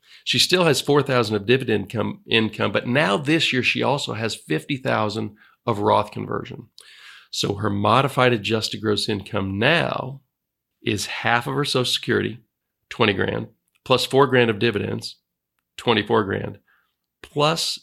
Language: English